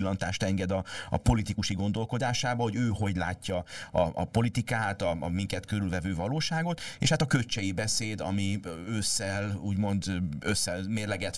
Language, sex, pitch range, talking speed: Hungarian, male, 90-115 Hz, 135 wpm